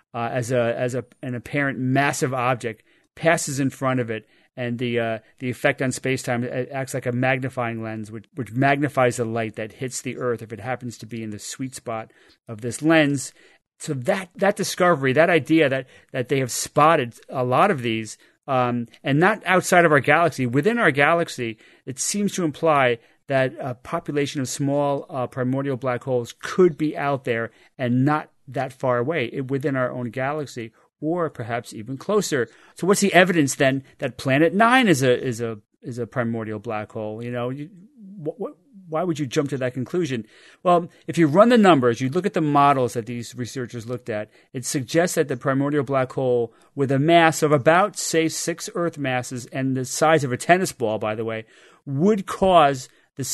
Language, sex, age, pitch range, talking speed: English, male, 40-59, 120-160 Hz, 200 wpm